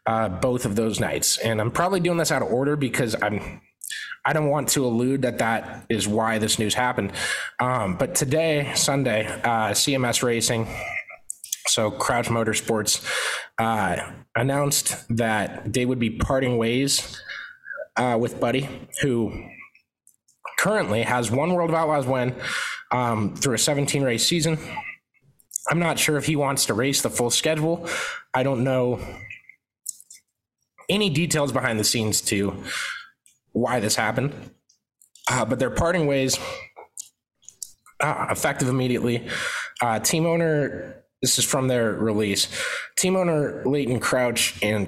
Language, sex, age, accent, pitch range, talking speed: English, male, 20-39, American, 110-145 Hz, 140 wpm